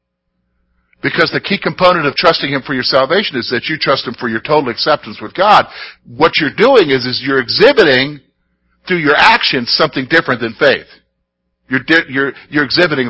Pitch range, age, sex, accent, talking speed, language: 125-205 Hz, 50-69, male, American, 185 wpm, English